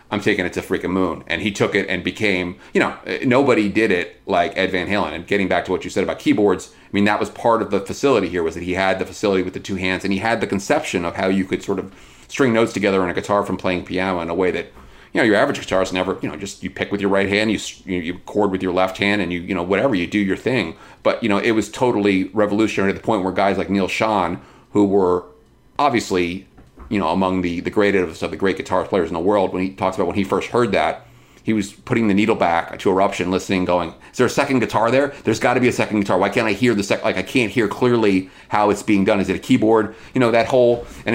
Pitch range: 90-105 Hz